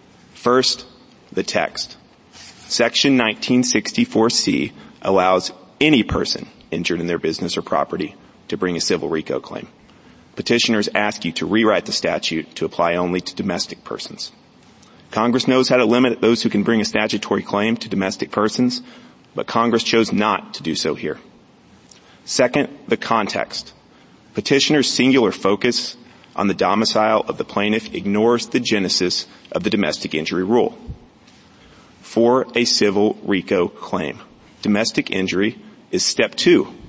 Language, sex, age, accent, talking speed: English, male, 30-49, American, 140 wpm